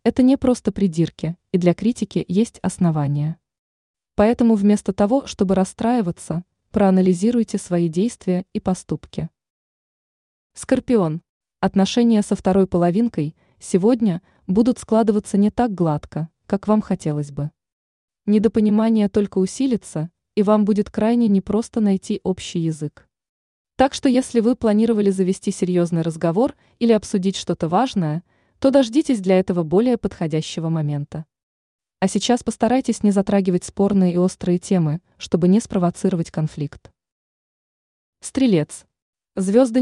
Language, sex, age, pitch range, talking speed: Russian, female, 20-39, 175-225 Hz, 120 wpm